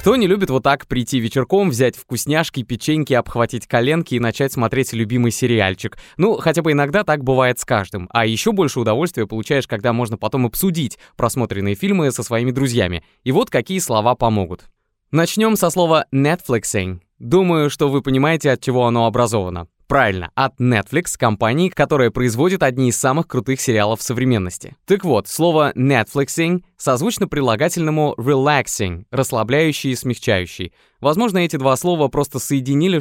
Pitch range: 115-155 Hz